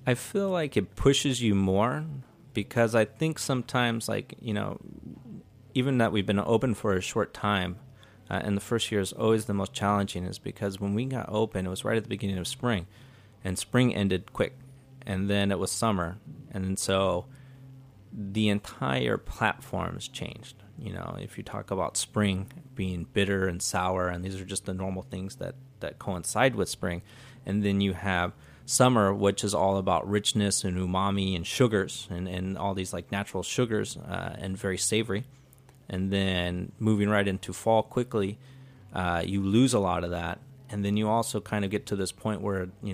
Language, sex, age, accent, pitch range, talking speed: English, male, 30-49, American, 95-120 Hz, 190 wpm